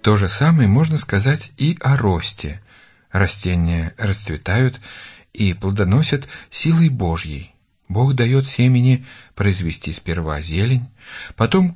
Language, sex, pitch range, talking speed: Russian, male, 90-130 Hz, 105 wpm